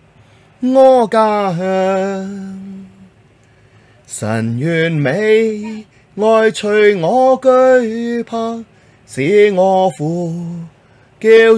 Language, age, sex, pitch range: Chinese, 30-49, male, 150-215 Hz